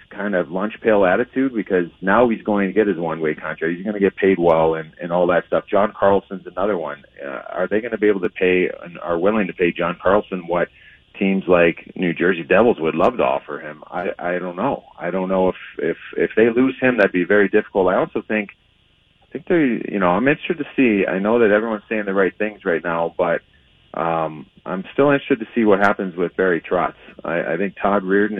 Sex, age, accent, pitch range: male, 30-49, American, 90-110 Hz